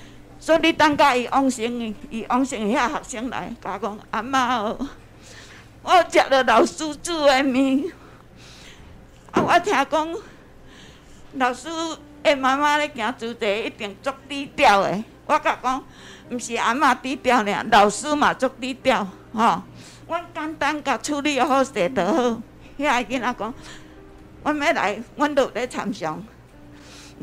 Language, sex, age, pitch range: Chinese, female, 60-79, 230-305 Hz